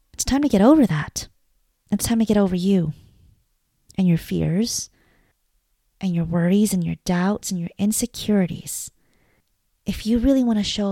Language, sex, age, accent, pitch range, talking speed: English, female, 30-49, American, 170-205 Hz, 165 wpm